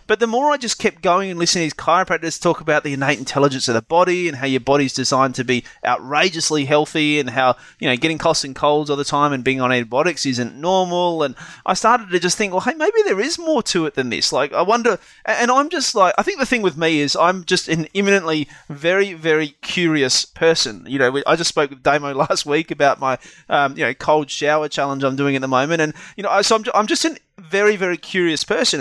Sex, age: male, 30-49